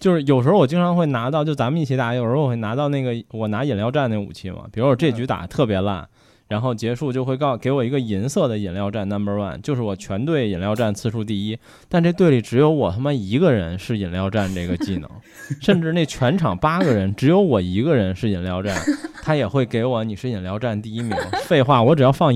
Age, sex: 20-39, male